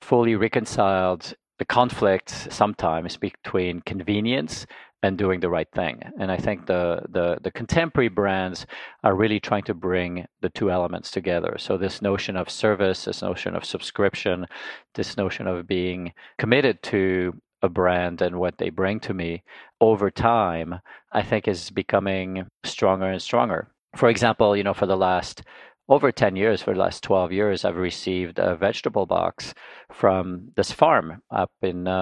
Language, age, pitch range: English, 40-59, 90-105 Hz